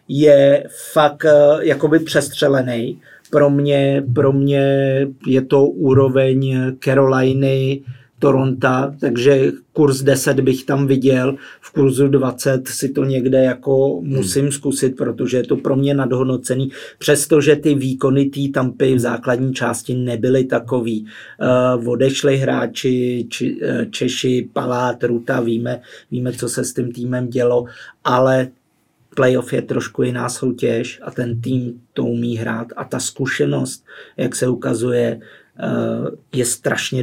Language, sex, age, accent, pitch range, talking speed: Czech, male, 50-69, native, 125-135 Hz, 120 wpm